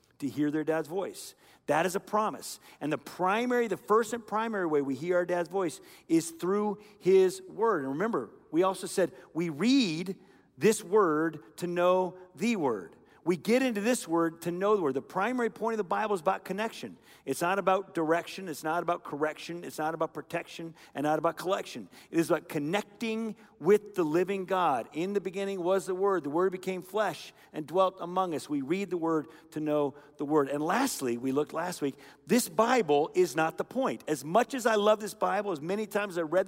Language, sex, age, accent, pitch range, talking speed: English, male, 50-69, American, 160-210 Hz, 210 wpm